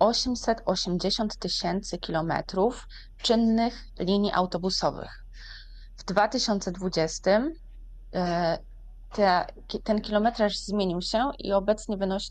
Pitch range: 180-215 Hz